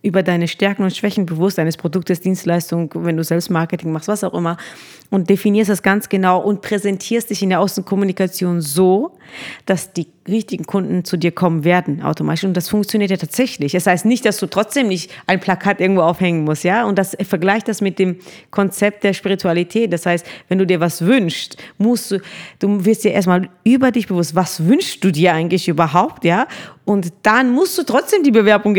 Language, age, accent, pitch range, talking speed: German, 30-49, German, 175-210 Hz, 200 wpm